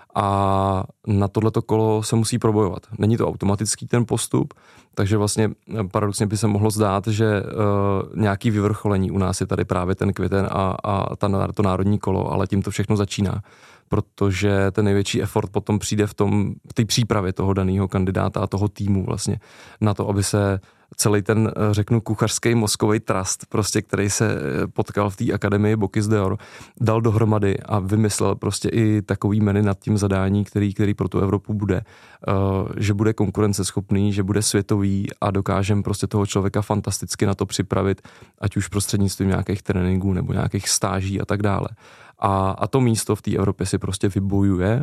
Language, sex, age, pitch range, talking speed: Czech, male, 20-39, 100-110 Hz, 175 wpm